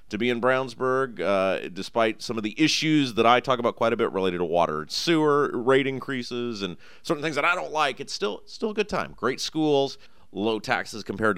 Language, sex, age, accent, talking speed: English, male, 30-49, American, 215 wpm